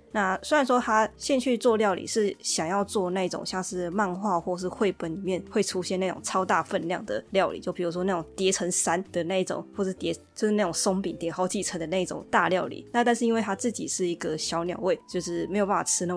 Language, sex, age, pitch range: Chinese, female, 20-39, 170-200 Hz